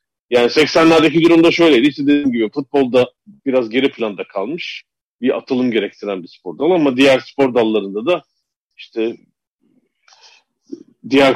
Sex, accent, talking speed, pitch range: male, native, 130 wpm, 120-160 Hz